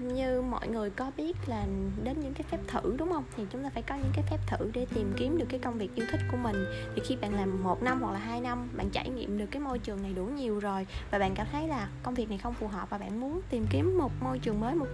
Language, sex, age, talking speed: Vietnamese, female, 20-39, 300 wpm